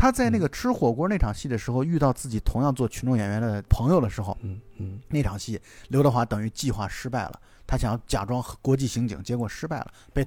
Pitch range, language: 110-165 Hz, Chinese